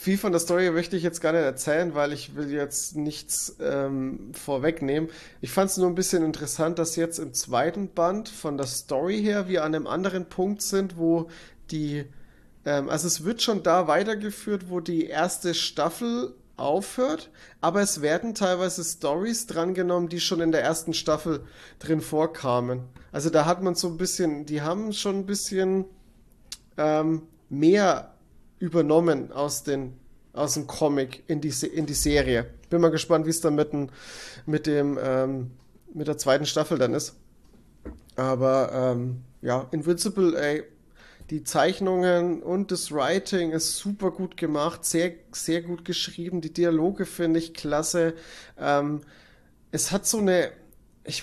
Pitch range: 150-180 Hz